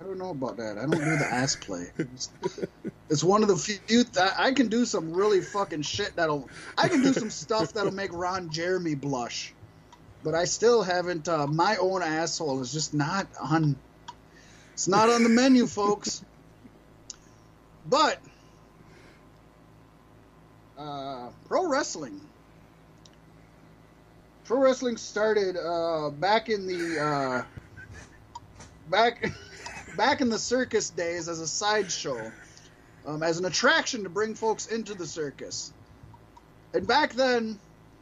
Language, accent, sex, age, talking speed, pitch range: English, American, male, 30-49, 135 wpm, 160-220 Hz